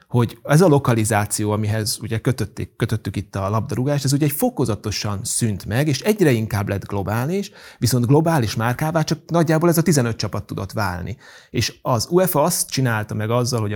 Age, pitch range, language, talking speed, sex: 30-49, 105-140 Hz, Hungarian, 175 wpm, male